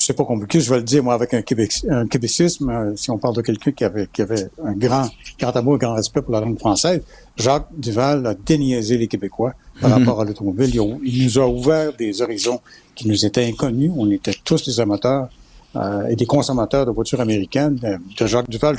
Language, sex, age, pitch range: French, male, 60-79, 110-140 Hz